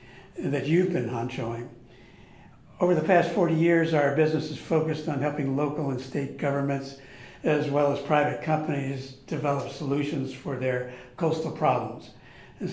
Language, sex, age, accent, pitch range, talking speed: English, male, 60-79, American, 140-165 Hz, 145 wpm